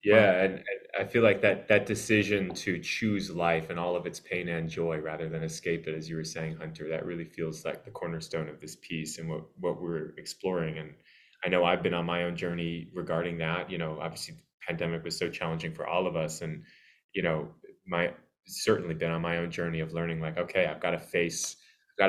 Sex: male